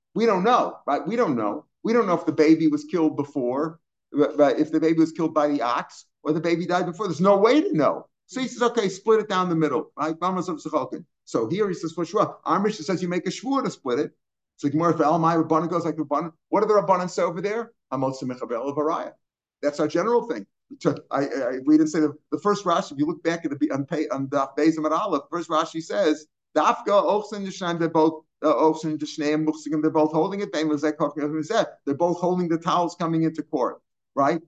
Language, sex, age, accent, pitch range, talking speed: English, male, 50-69, American, 155-185 Hz, 205 wpm